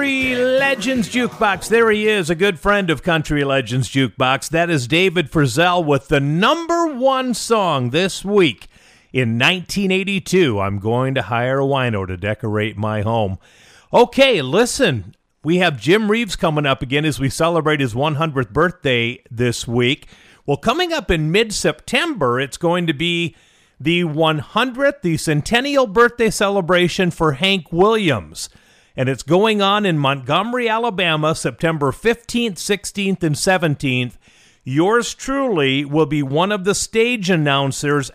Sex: male